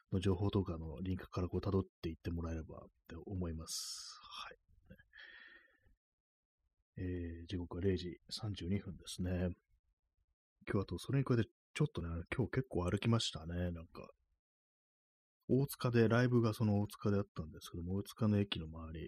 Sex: male